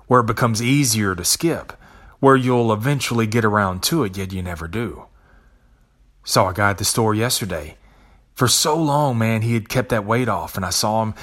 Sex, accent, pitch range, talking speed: male, American, 105-140 Hz, 205 wpm